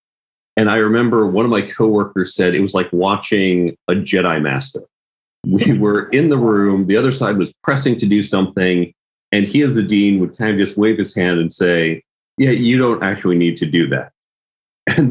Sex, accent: male, American